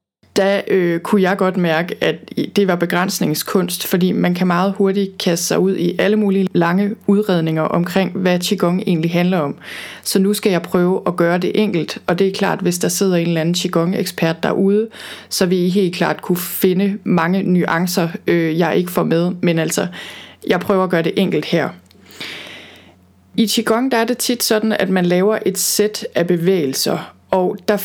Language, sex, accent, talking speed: Danish, female, native, 190 wpm